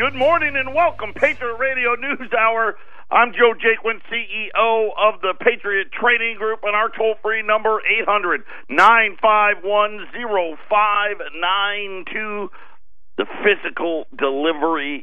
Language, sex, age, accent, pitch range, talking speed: English, male, 50-69, American, 135-220 Hz, 110 wpm